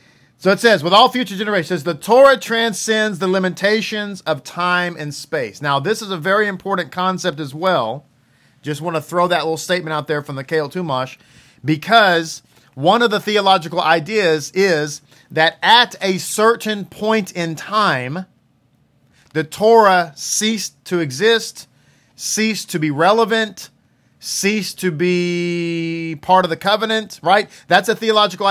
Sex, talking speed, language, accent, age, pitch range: male, 155 wpm, English, American, 40-59, 155-215 Hz